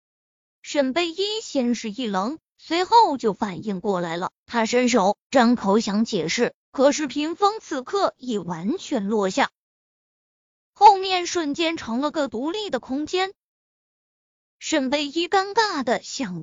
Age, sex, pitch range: 20-39, female, 240-335 Hz